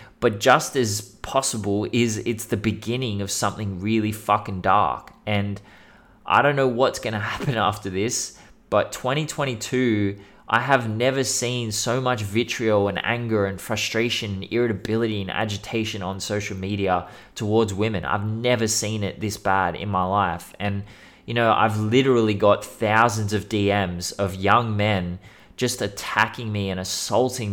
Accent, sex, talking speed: Australian, male, 155 wpm